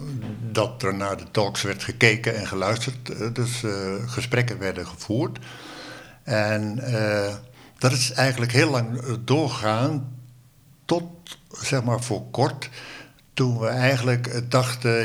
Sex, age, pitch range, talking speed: male, 60-79, 105-125 Hz, 125 wpm